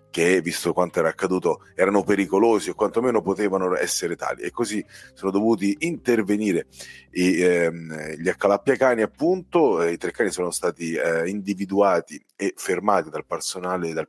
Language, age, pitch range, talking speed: Italian, 40-59, 90-110 Hz, 150 wpm